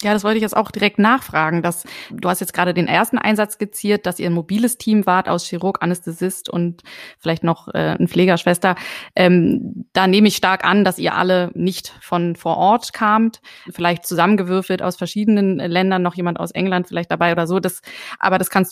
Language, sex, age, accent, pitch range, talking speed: German, female, 20-39, German, 185-220 Hz, 200 wpm